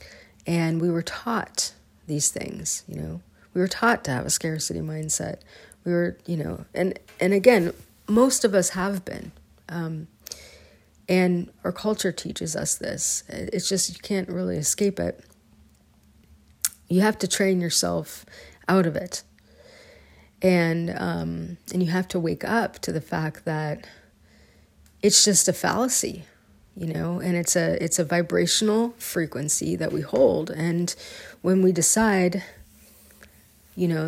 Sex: female